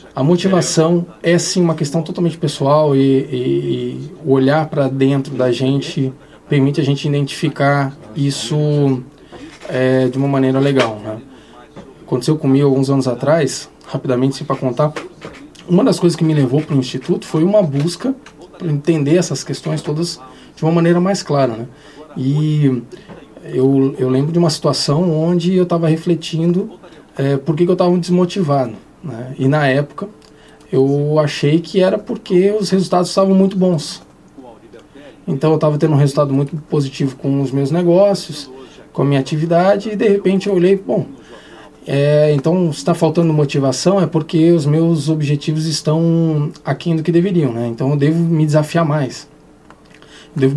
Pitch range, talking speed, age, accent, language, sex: 135-170 Hz, 160 wpm, 20-39, Brazilian, Portuguese, male